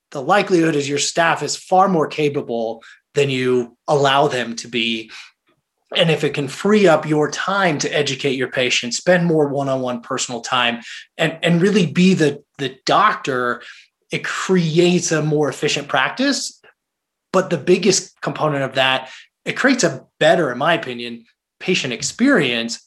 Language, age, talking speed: English, 20-39, 155 wpm